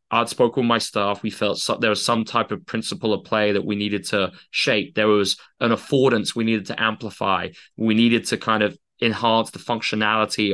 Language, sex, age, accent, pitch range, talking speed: English, male, 20-39, British, 105-125 Hz, 205 wpm